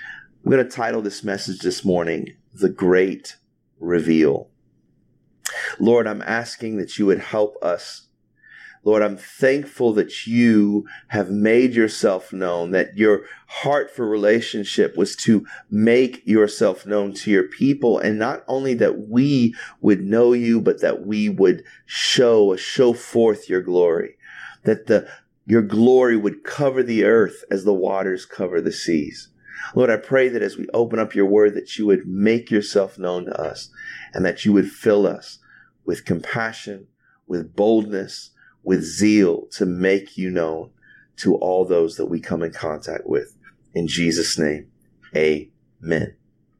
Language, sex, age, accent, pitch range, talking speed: English, male, 40-59, American, 95-120 Hz, 155 wpm